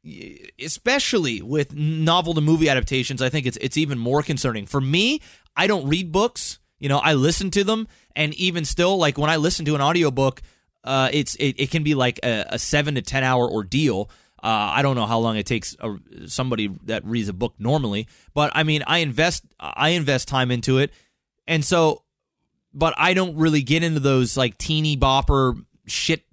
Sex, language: male, English